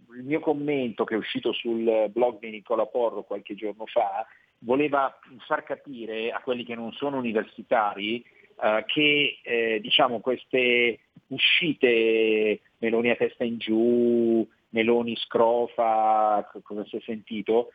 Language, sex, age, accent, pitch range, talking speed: Italian, male, 40-59, native, 110-140 Hz, 135 wpm